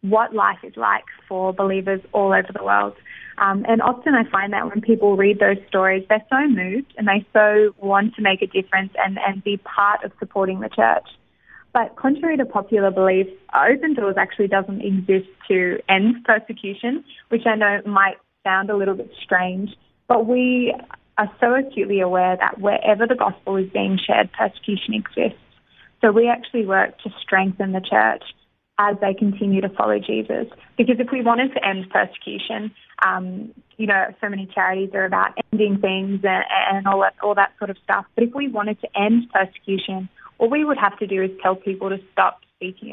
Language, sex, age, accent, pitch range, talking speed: English, female, 20-39, Australian, 195-220 Hz, 190 wpm